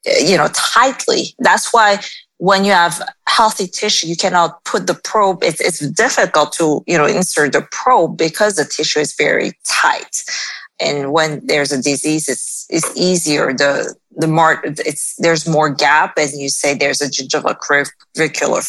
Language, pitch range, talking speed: English, 160-210 Hz, 165 wpm